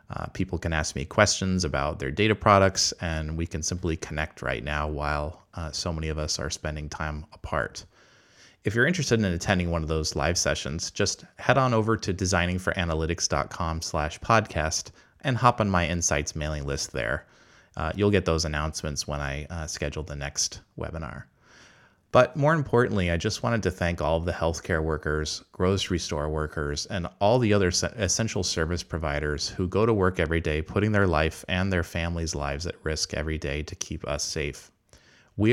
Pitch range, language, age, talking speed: 80-100 Hz, English, 30-49, 185 wpm